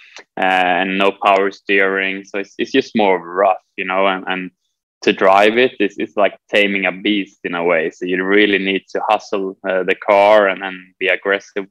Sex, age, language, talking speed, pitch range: male, 20-39, Dutch, 205 wpm, 95-100 Hz